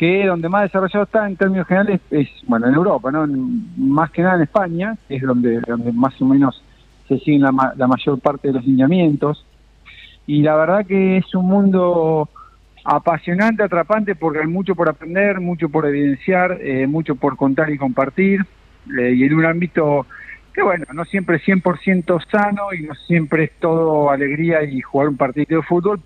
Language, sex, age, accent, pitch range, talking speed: Spanish, male, 50-69, Argentinian, 130-170 Hz, 185 wpm